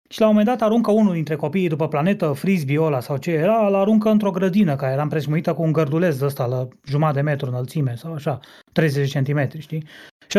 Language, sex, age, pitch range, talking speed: Romanian, male, 30-49, 150-215 Hz, 220 wpm